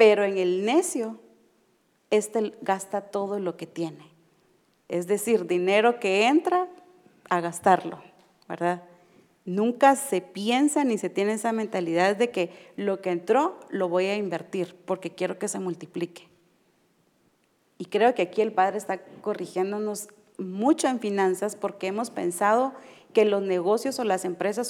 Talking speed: 145 wpm